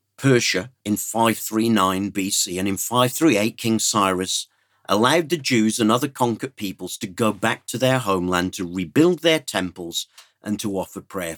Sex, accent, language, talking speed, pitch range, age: male, British, English, 160 wpm, 100-125 Hz, 50-69